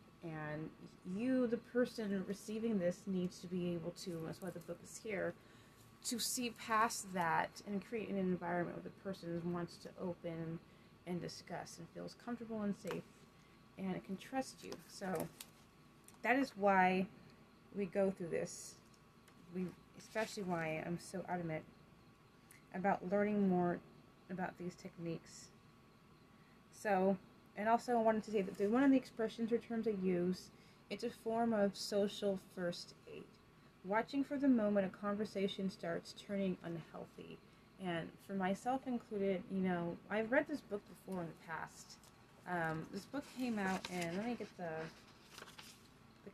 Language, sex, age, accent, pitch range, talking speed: English, female, 20-39, American, 180-220 Hz, 155 wpm